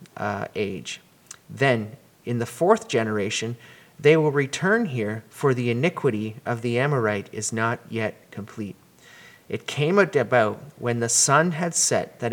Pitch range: 115-140 Hz